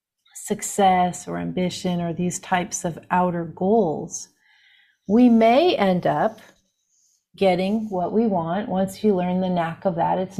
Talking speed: 145 wpm